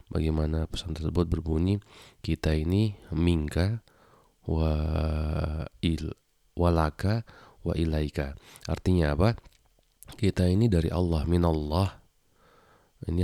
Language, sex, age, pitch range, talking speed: Indonesian, male, 30-49, 75-90 Hz, 90 wpm